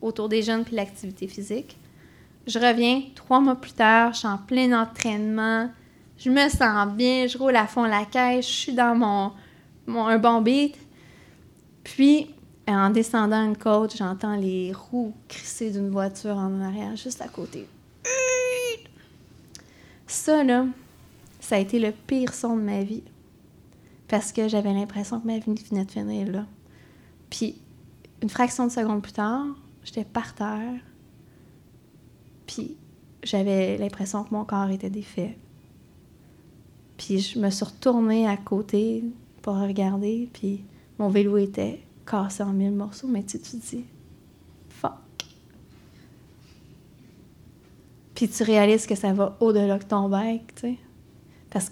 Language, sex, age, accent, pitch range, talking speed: French, female, 20-39, Canadian, 200-235 Hz, 145 wpm